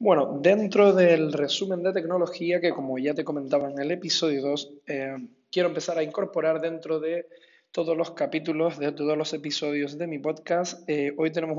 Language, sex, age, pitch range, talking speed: Spanish, male, 20-39, 145-170 Hz, 175 wpm